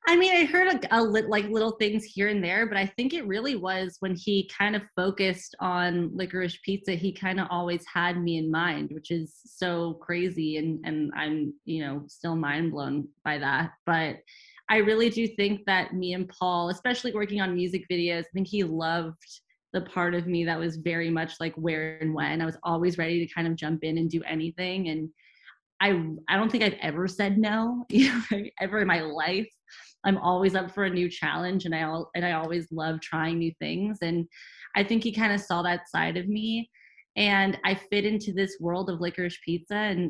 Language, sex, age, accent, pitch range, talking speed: English, female, 20-39, American, 165-205 Hz, 215 wpm